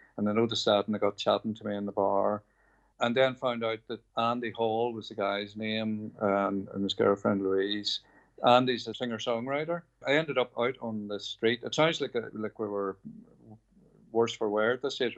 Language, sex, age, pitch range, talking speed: English, male, 50-69, 105-120 Hz, 205 wpm